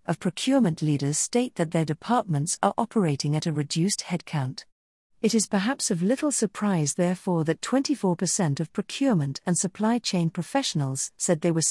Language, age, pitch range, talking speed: English, 50-69, 155-215 Hz, 160 wpm